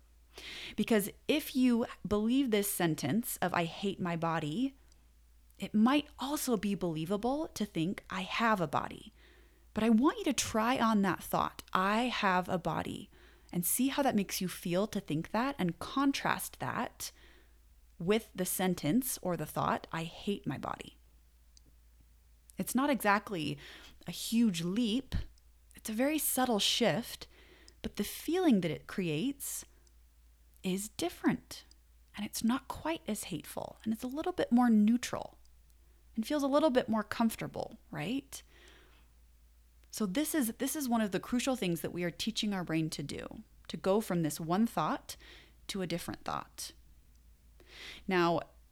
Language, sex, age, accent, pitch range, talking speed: English, female, 30-49, American, 160-235 Hz, 155 wpm